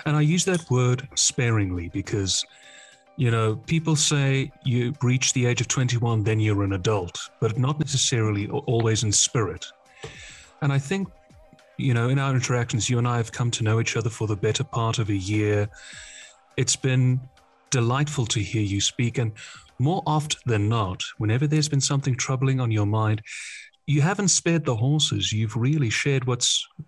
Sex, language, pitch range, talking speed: male, English, 110-145 Hz, 180 wpm